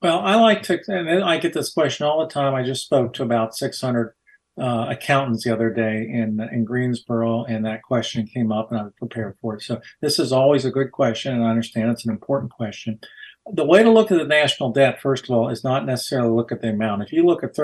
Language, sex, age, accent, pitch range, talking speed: English, male, 50-69, American, 115-145 Hz, 250 wpm